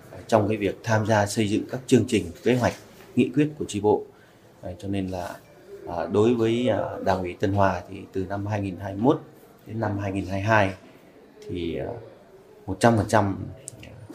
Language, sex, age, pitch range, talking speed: Vietnamese, male, 30-49, 95-115 Hz, 155 wpm